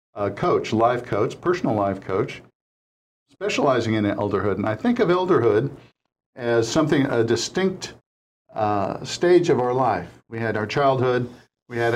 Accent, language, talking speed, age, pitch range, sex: American, English, 155 wpm, 60-79, 115-140 Hz, male